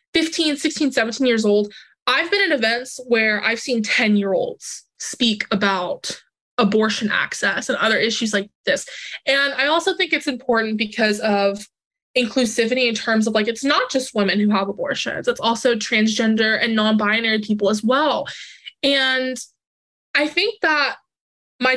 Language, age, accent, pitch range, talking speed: English, 20-39, American, 210-260 Hz, 150 wpm